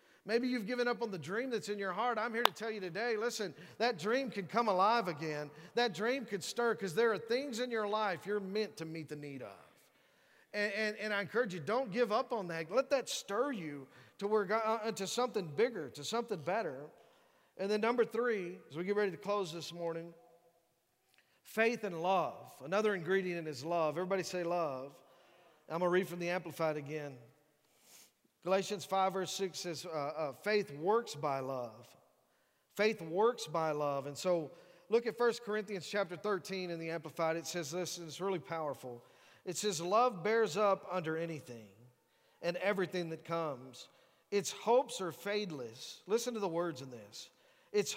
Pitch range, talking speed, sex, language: 165-220 Hz, 190 wpm, male, English